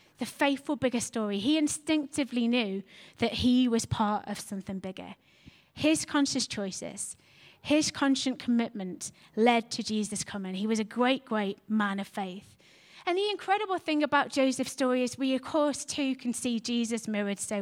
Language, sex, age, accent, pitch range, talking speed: English, female, 20-39, British, 215-285 Hz, 165 wpm